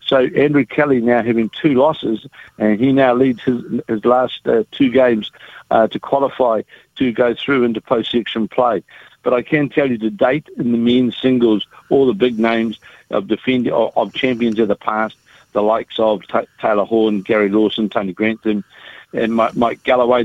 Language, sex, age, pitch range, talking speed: English, male, 60-79, 115-130 Hz, 185 wpm